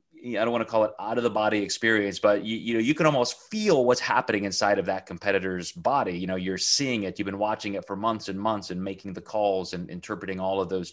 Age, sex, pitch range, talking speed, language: 30-49, male, 95-115 Hz, 265 wpm, English